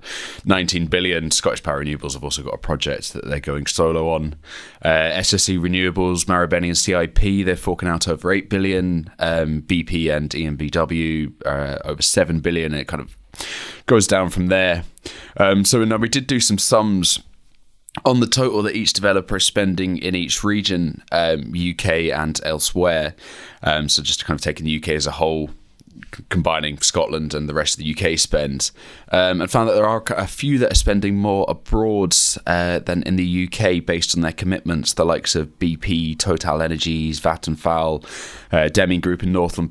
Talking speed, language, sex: 185 wpm, English, male